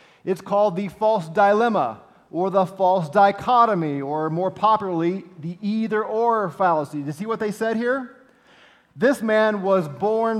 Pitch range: 140-215 Hz